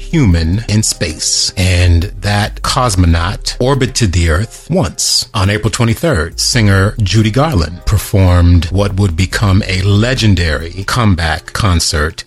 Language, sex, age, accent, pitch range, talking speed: English, male, 30-49, American, 85-105 Hz, 115 wpm